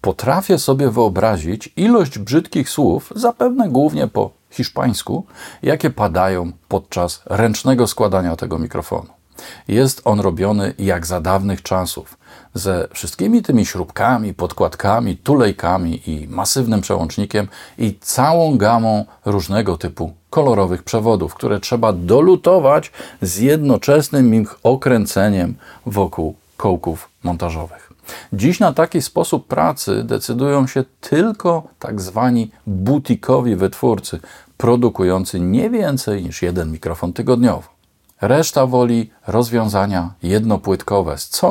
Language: Polish